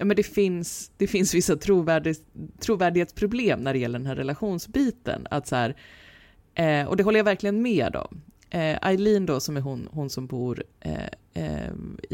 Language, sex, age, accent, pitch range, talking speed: English, female, 20-39, Swedish, 135-195 Hz, 175 wpm